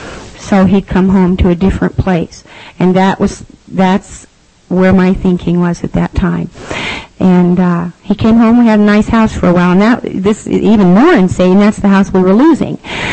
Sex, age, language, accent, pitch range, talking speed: female, 50-69, English, American, 180-215 Hz, 205 wpm